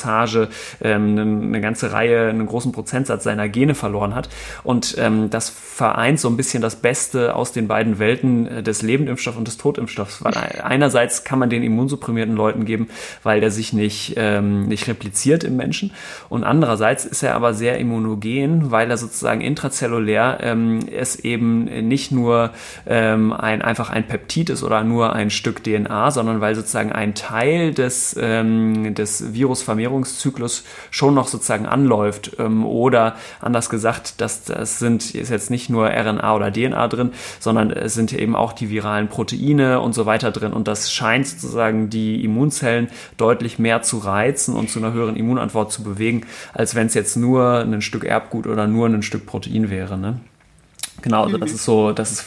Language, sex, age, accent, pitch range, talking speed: German, male, 30-49, German, 110-120 Hz, 170 wpm